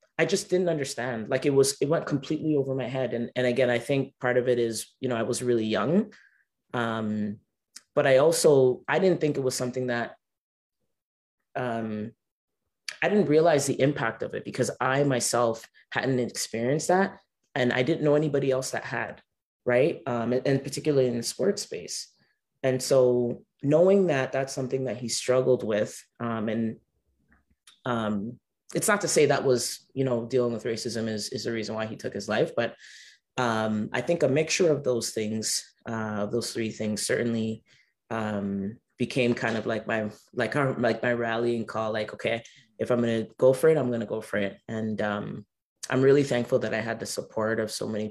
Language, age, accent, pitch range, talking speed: English, 20-39, American, 110-135 Hz, 195 wpm